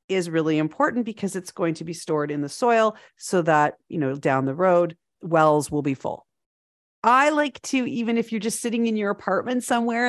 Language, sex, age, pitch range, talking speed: English, female, 40-59, 170-235 Hz, 210 wpm